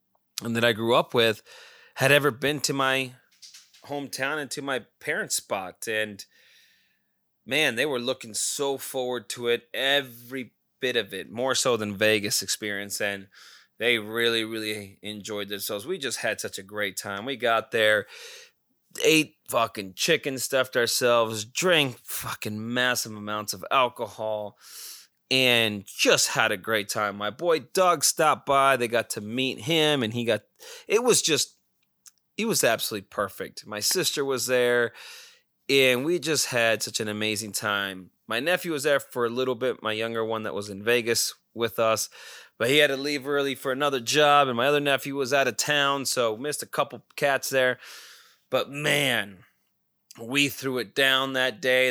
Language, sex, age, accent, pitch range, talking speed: English, male, 20-39, American, 110-140 Hz, 170 wpm